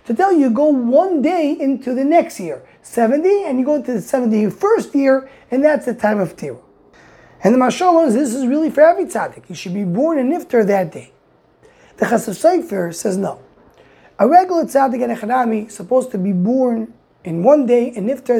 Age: 20-39